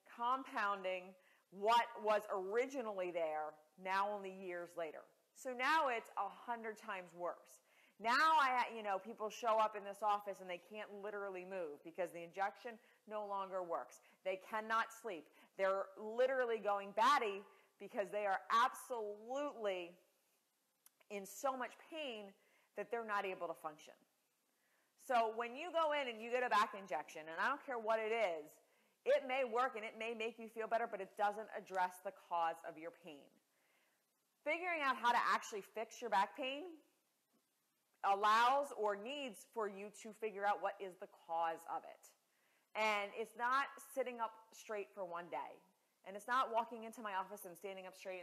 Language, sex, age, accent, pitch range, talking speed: English, female, 40-59, American, 185-235 Hz, 170 wpm